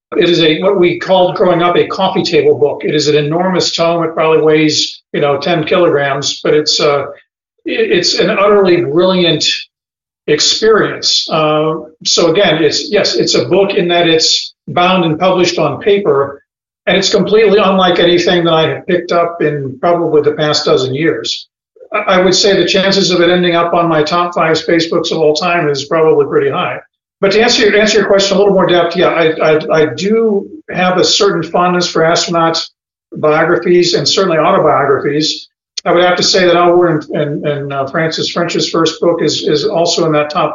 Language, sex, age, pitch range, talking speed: English, male, 50-69, 155-195 Hz, 195 wpm